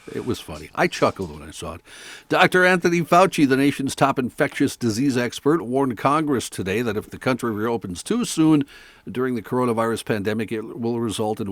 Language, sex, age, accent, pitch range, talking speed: English, male, 60-79, American, 105-140 Hz, 190 wpm